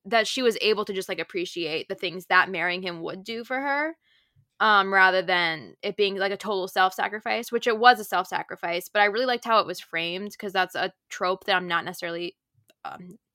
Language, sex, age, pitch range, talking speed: English, female, 10-29, 170-205 Hz, 215 wpm